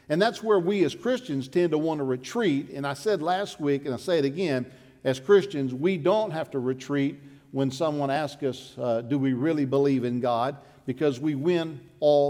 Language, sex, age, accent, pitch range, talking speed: English, male, 50-69, American, 135-185 Hz, 210 wpm